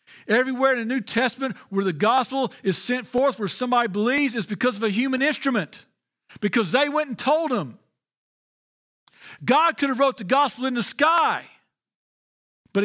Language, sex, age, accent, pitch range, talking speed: English, male, 50-69, American, 200-255 Hz, 170 wpm